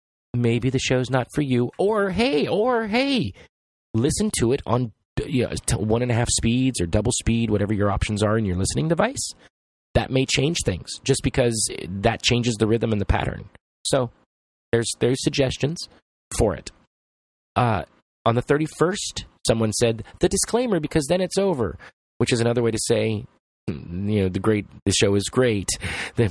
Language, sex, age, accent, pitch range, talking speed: English, male, 30-49, American, 100-130 Hz, 180 wpm